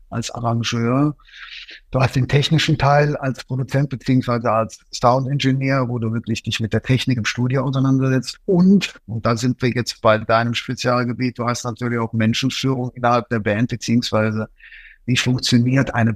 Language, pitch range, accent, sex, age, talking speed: German, 115-130 Hz, German, male, 50-69, 160 wpm